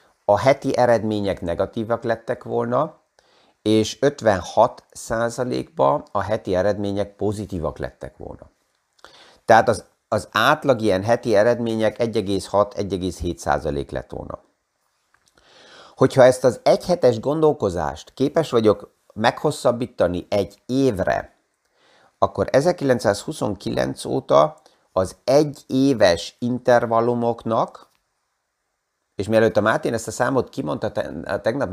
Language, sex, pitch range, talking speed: Hungarian, male, 100-125 Hz, 100 wpm